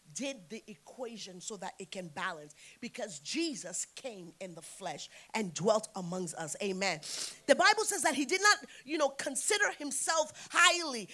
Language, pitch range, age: English, 205-330 Hz, 30-49